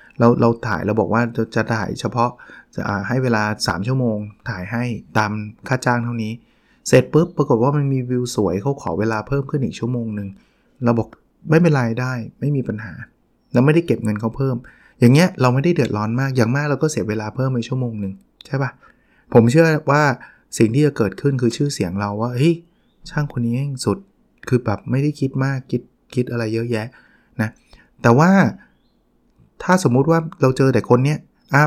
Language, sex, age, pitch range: Thai, male, 20-39, 115-150 Hz